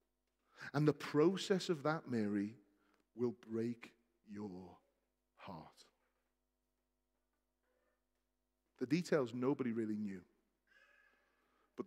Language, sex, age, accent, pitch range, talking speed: English, male, 40-59, British, 110-140 Hz, 80 wpm